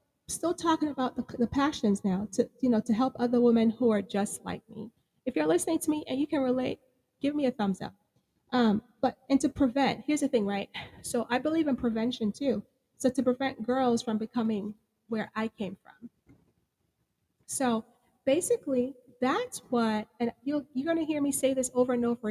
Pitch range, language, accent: 220-260 Hz, English, American